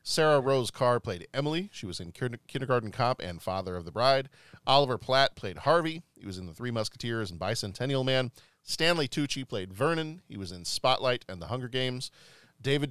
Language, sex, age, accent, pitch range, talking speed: English, male, 40-59, American, 105-135 Hz, 190 wpm